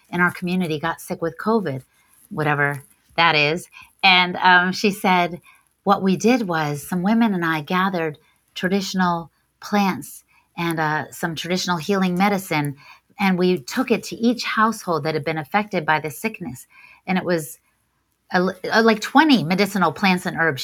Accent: American